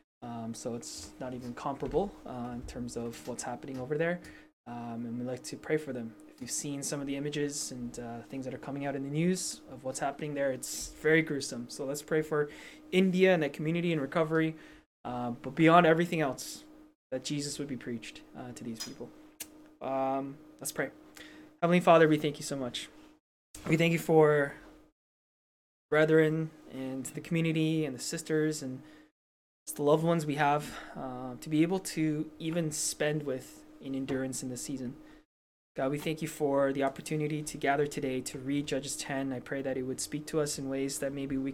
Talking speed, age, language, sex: 200 wpm, 20-39, English, male